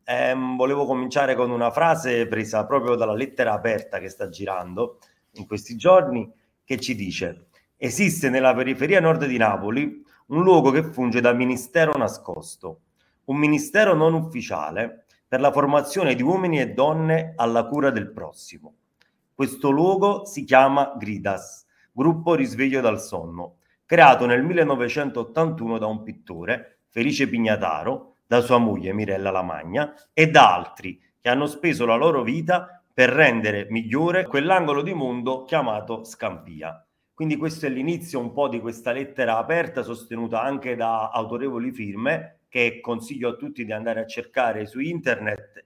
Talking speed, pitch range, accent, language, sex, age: 145 wpm, 115-150 Hz, native, Italian, male, 30-49